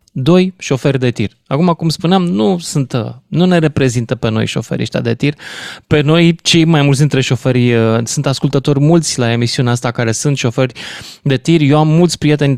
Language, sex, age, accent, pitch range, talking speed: Romanian, male, 20-39, native, 130-175 Hz, 185 wpm